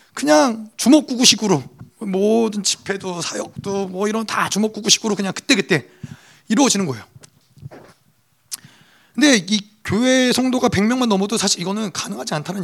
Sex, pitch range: male, 195-250 Hz